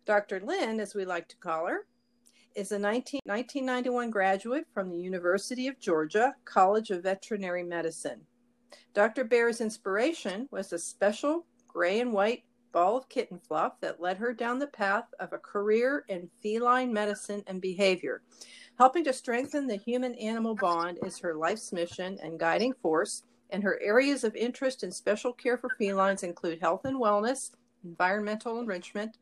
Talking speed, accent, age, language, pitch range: 160 wpm, American, 50-69, English, 190-245 Hz